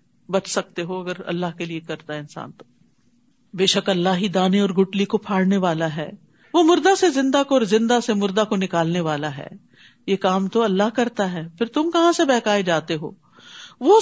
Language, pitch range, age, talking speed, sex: Urdu, 180-245 Hz, 50-69, 210 wpm, female